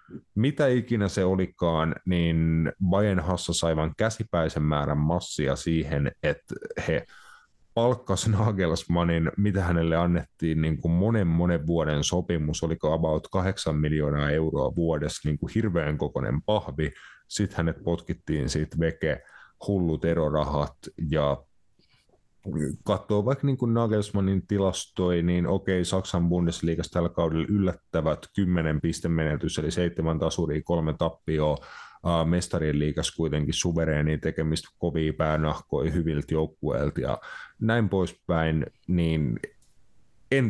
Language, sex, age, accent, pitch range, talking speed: Finnish, male, 30-49, native, 80-95 Hz, 115 wpm